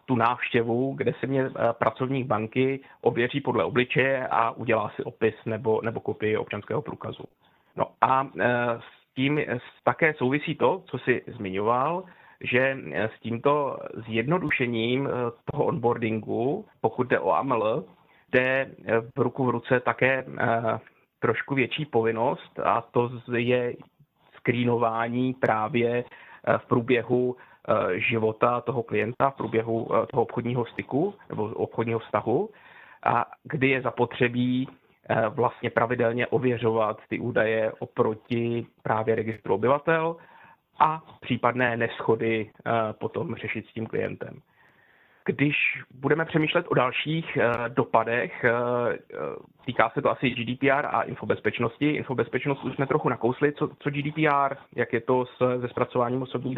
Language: Czech